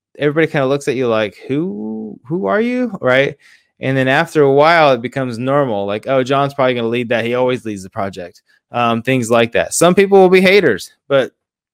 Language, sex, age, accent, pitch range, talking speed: English, male, 20-39, American, 120-140 Hz, 220 wpm